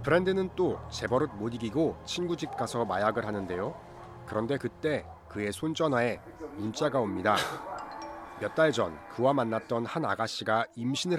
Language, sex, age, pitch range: English, male, 40-59, 100-150 Hz